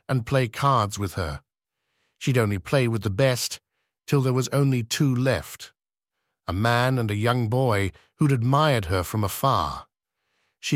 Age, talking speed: 50-69, 160 wpm